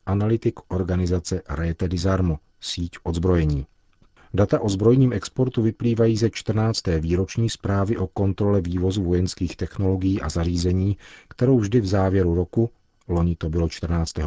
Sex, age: male, 40-59